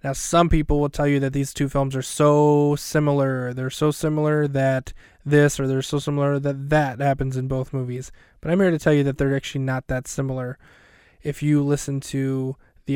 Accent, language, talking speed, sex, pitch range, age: American, English, 210 wpm, male, 135-150 Hz, 20-39